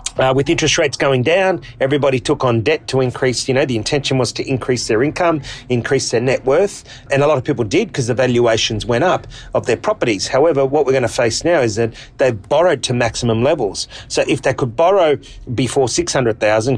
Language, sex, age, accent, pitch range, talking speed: English, male, 40-59, Australian, 115-140 Hz, 215 wpm